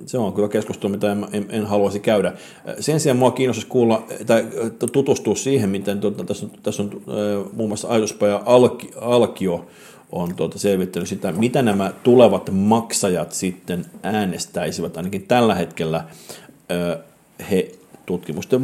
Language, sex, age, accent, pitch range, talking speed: Finnish, male, 50-69, native, 90-115 Hz, 130 wpm